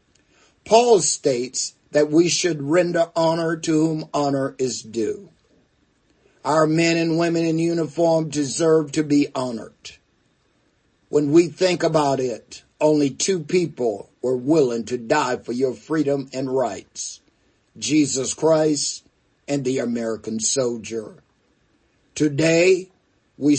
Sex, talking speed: male, 120 wpm